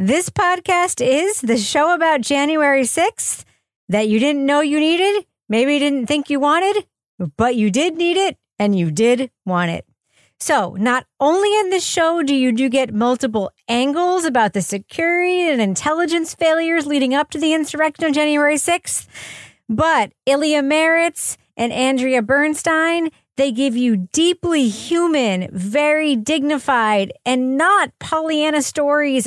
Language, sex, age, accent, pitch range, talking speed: English, female, 40-59, American, 230-315 Hz, 150 wpm